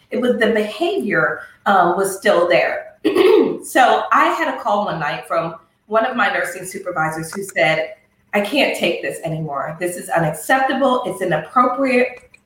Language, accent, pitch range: English, American, 180-275 Hz